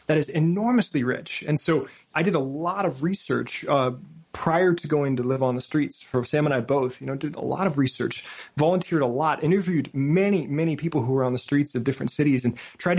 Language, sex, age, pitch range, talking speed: English, male, 20-39, 130-165 Hz, 230 wpm